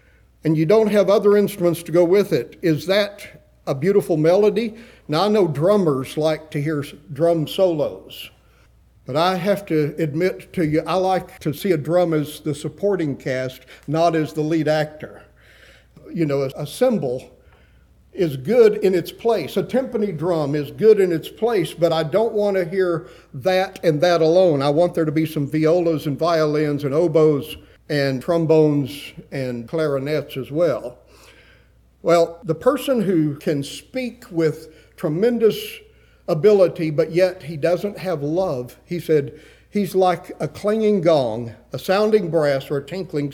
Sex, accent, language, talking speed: male, American, English, 165 wpm